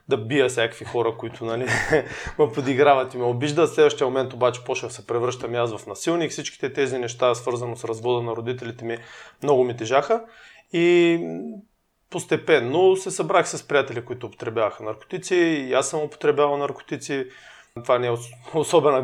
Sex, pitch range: male, 120-130 Hz